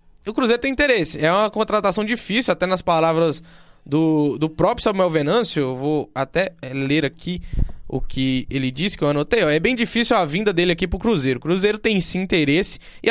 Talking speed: 205 wpm